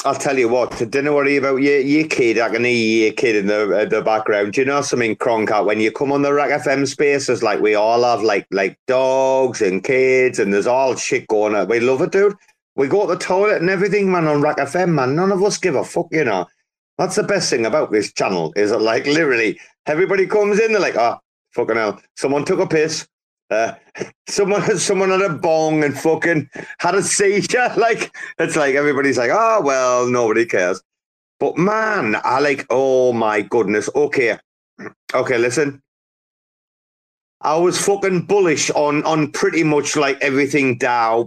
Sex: male